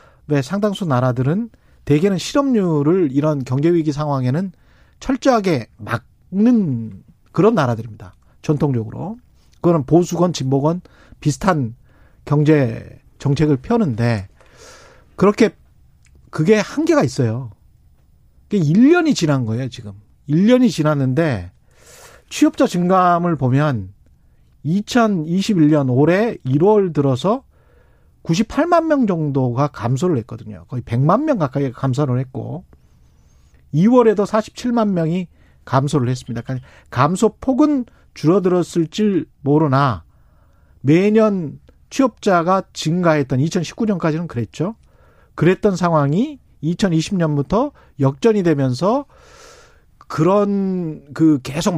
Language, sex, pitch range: Korean, male, 130-195 Hz